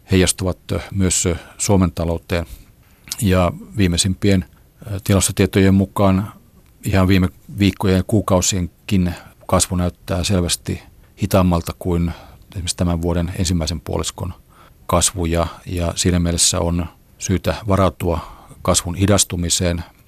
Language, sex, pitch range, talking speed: Finnish, male, 85-95 Hz, 100 wpm